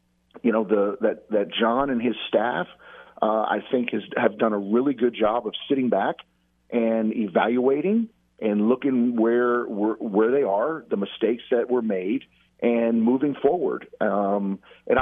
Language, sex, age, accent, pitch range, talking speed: English, male, 40-59, American, 105-140 Hz, 165 wpm